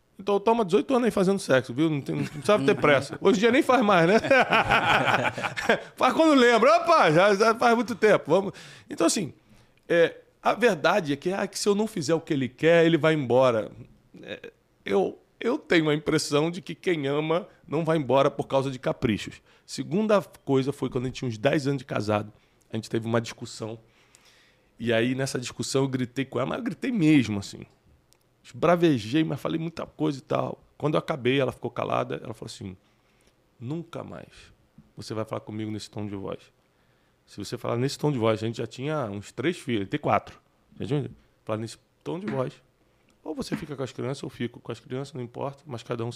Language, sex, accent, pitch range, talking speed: Portuguese, male, Brazilian, 120-170 Hz, 210 wpm